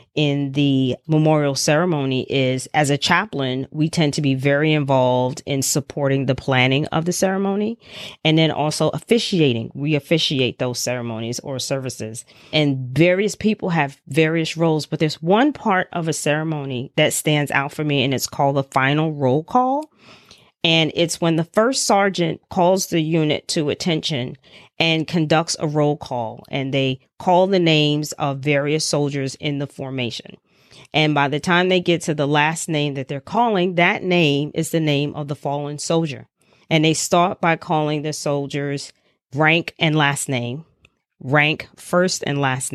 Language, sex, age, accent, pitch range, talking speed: English, female, 40-59, American, 140-165 Hz, 170 wpm